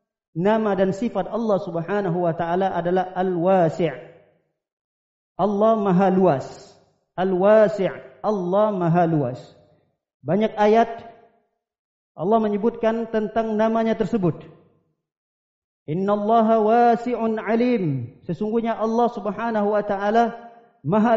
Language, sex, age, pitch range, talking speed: Indonesian, male, 40-59, 175-230 Hz, 95 wpm